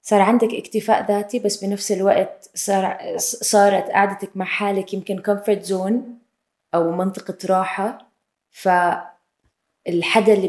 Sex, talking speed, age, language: female, 115 wpm, 20-39, Arabic